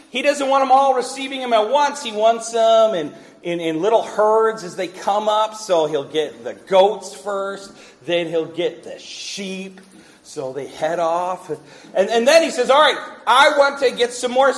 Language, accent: English, American